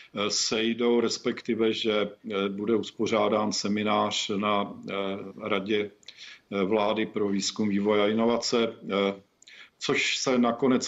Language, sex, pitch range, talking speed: Czech, male, 105-120 Hz, 95 wpm